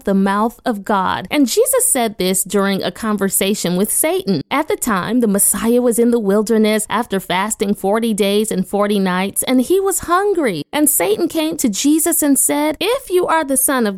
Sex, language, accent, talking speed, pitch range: female, English, American, 195 wpm, 215-315 Hz